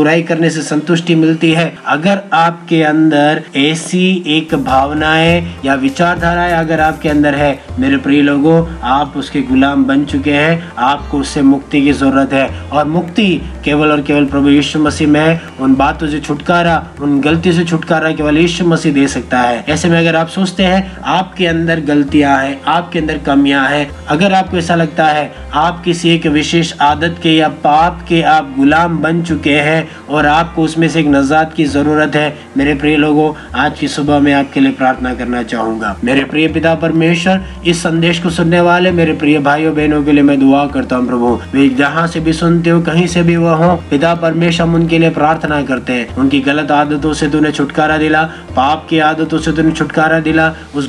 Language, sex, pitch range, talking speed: Hindi, male, 145-165 Hz, 190 wpm